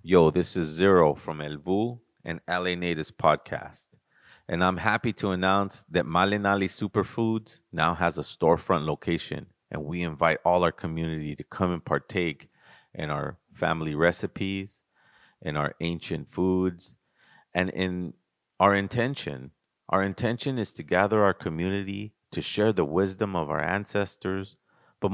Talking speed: 145 wpm